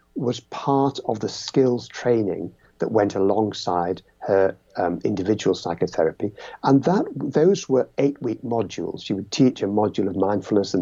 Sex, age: male, 60-79